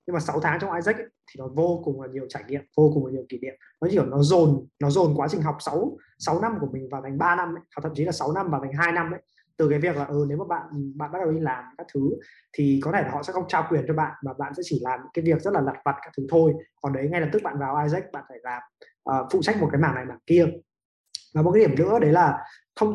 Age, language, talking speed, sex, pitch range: 20-39, Vietnamese, 315 wpm, male, 140-175 Hz